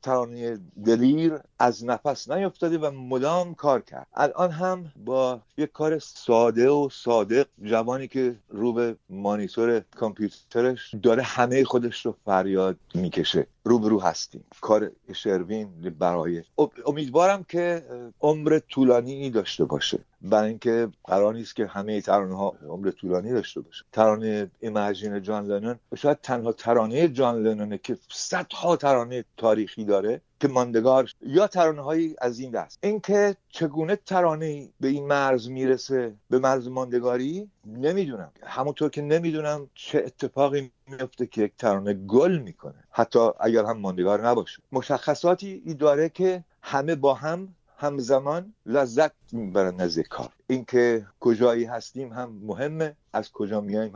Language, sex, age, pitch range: Persian, male, 50-69, 110-150 Hz